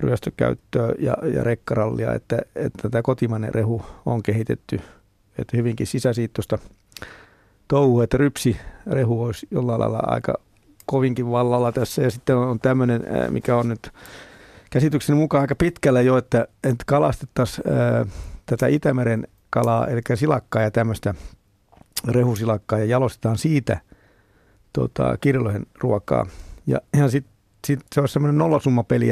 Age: 50-69